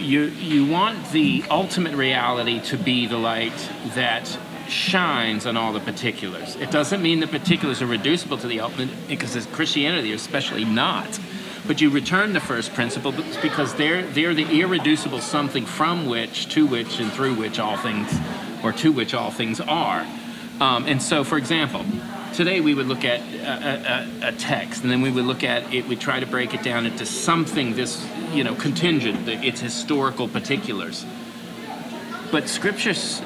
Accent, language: American, English